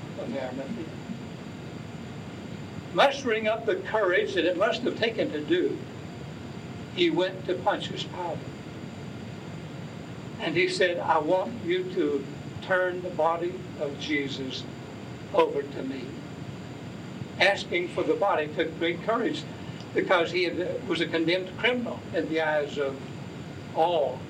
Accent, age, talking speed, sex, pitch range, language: American, 60-79, 125 wpm, male, 160-220 Hz, English